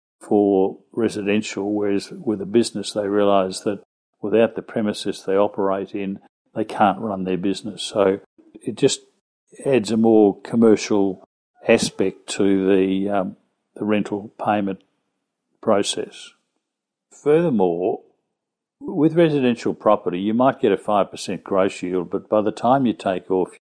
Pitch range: 95-110 Hz